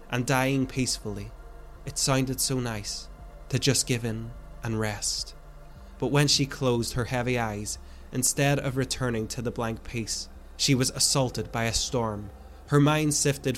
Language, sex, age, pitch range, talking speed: English, male, 20-39, 110-135 Hz, 160 wpm